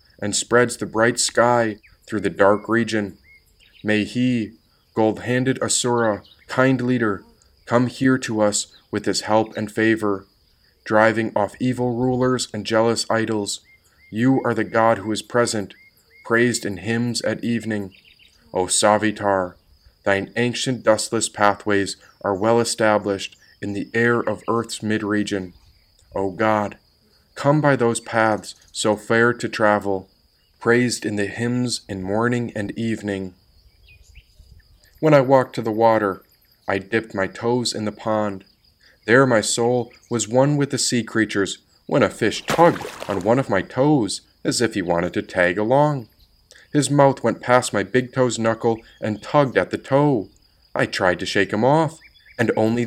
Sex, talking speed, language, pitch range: male, 155 wpm, English, 100-120 Hz